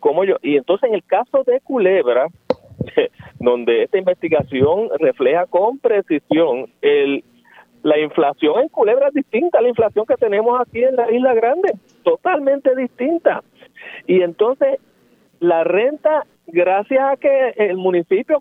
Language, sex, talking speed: Spanish, male, 140 wpm